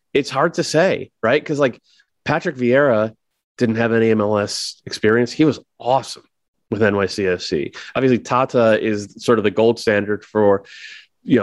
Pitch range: 100-120 Hz